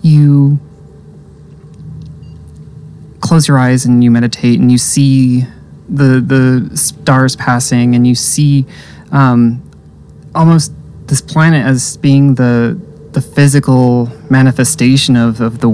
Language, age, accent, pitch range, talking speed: English, 20-39, American, 120-150 Hz, 115 wpm